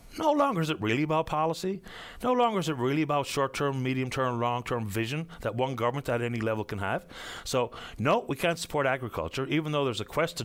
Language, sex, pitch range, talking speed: English, male, 115-165 Hz, 210 wpm